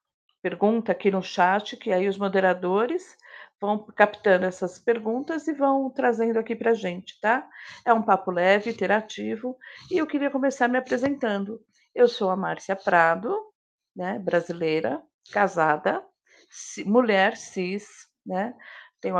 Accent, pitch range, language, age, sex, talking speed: Brazilian, 195-250 Hz, Portuguese, 50-69, female, 135 wpm